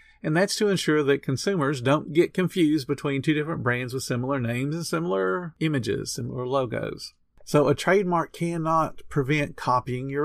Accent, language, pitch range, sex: American, English, 120-155 Hz, male